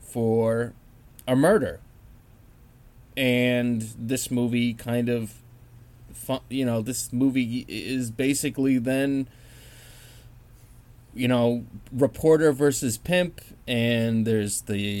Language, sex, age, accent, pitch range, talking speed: English, male, 20-39, American, 115-130 Hz, 90 wpm